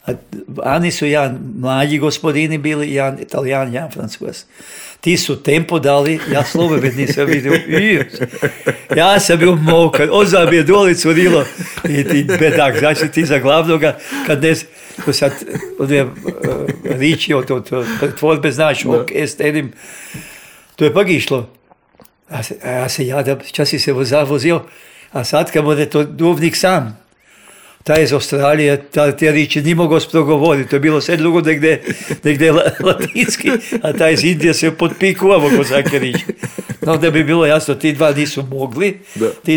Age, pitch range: 50-69, 140-170 Hz